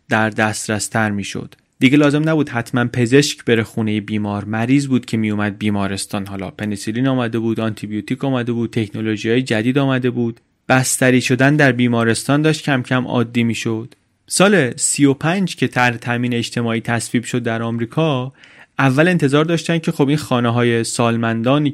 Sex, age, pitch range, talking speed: male, 30-49, 115-150 Hz, 170 wpm